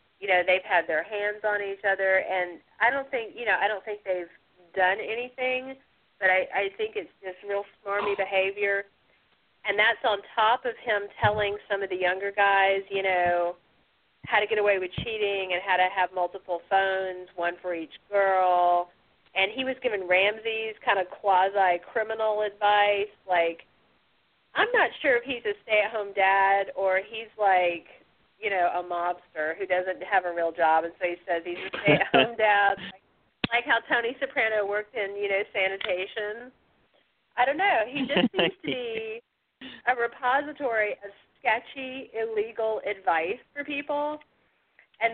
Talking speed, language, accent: 170 wpm, English, American